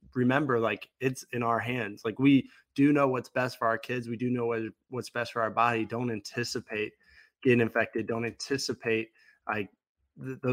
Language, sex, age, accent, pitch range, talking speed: English, male, 20-39, American, 115-130 Hz, 180 wpm